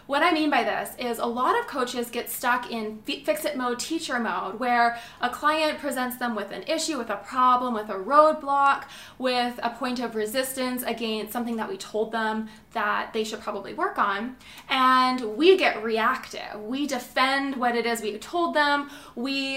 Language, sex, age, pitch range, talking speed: English, female, 20-39, 230-310 Hz, 185 wpm